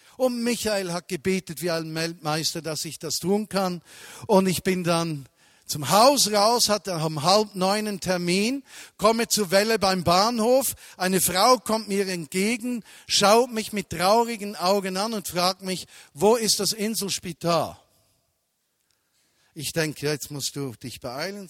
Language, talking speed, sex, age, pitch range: German, 155 wpm, male, 50-69, 155-205 Hz